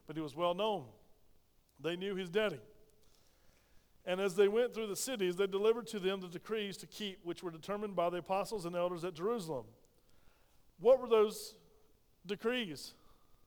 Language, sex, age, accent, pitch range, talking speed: English, male, 50-69, American, 175-210 Hz, 170 wpm